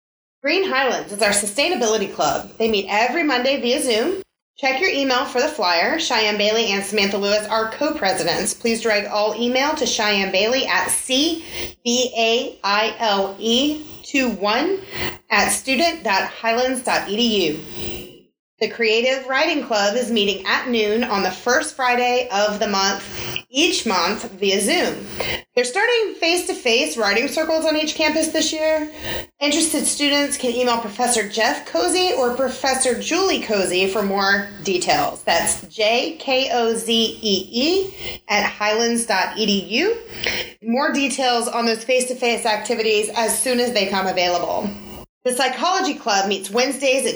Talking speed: 130 wpm